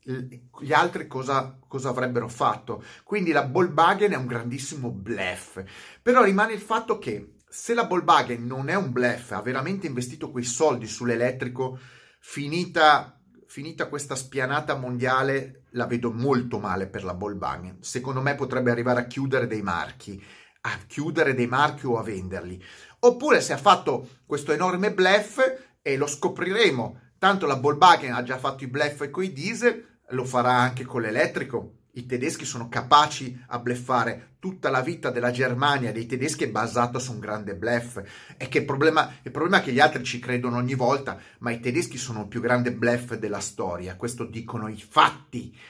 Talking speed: 175 wpm